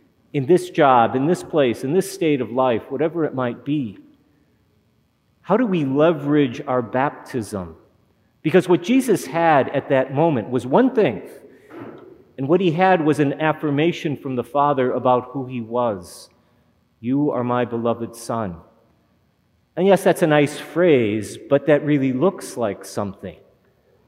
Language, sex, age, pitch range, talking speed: English, male, 40-59, 125-160 Hz, 155 wpm